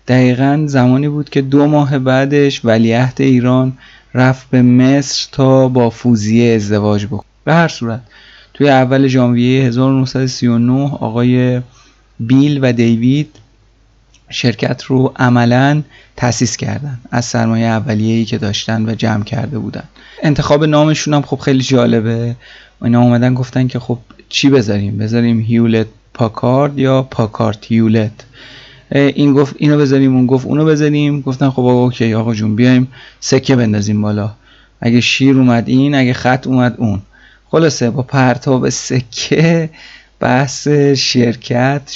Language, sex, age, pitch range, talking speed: Persian, male, 30-49, 115-140 Hz, 135 wpm